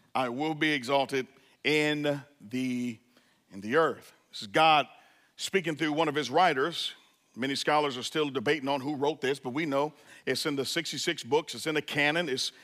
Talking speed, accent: 190 wpm, American